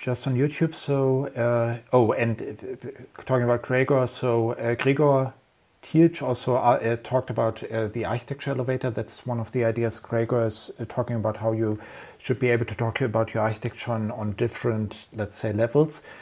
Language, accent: German, German